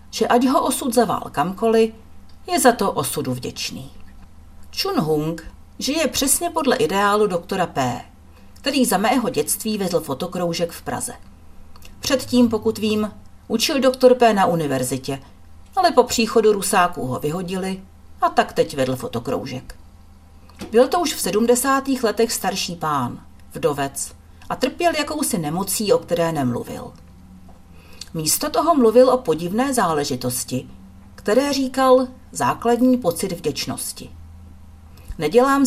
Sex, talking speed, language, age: female, 125 wpm, Czech, 40-59